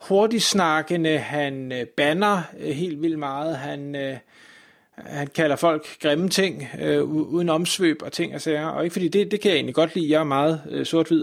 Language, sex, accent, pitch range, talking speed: Danish, male, native, 150-185 Hz, 175 wpm